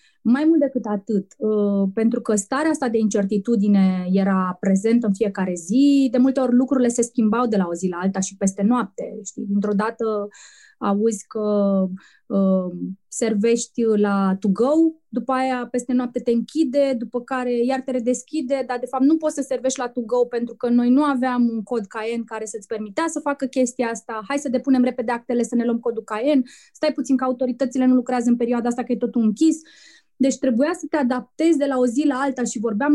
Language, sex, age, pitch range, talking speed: Romanian, female, 20-39, 210-255 Hz, 200 wpm